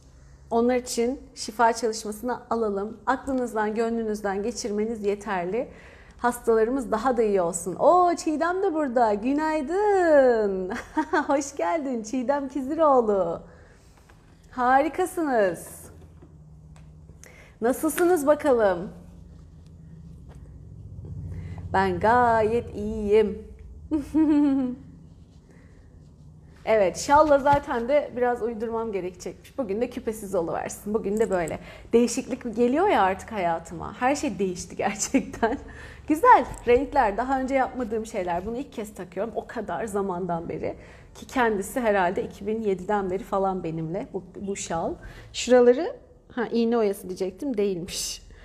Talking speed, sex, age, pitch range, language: 100 wpm, female, 40-59, 185-255 Hz, Turkish